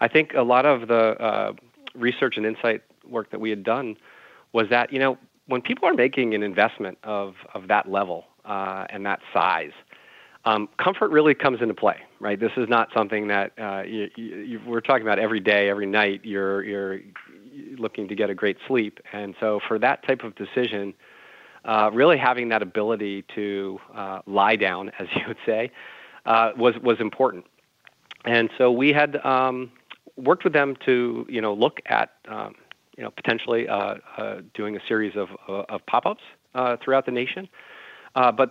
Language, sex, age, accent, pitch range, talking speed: English, male, 40-59, American, 105-125 Hz, 185 wpm